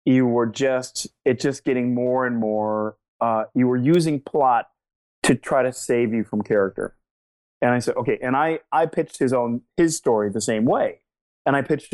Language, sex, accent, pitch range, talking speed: English, male, American, 125-165 Hz, 195 wpm